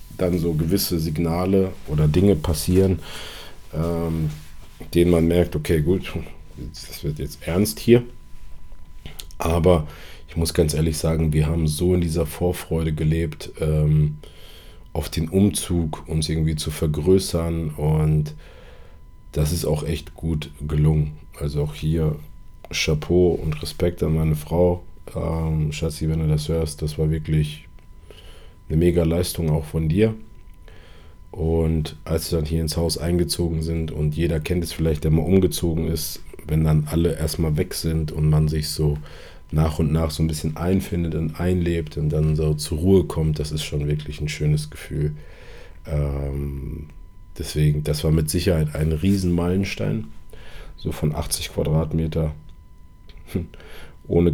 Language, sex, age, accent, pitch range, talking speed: German, male, 40-59, German, 75-85 Hz, 145 wpm